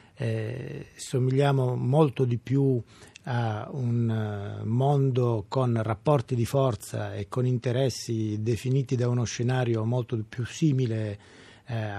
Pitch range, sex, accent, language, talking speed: 115-135 Hz, male, native, Italian, 115 wpm